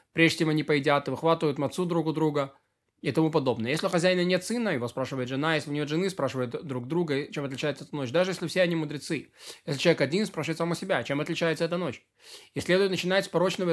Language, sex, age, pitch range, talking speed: Russian, male, 20-39, 140-175 Hz, 225 wpm